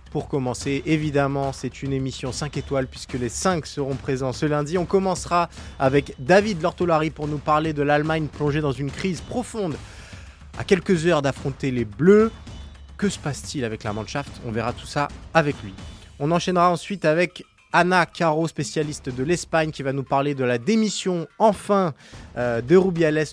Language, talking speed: French, 175 wpm